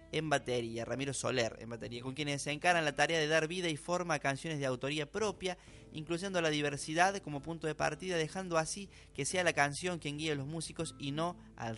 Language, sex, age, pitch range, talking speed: Spanish, male, 20-39, 130-160 Hz, 220 wpm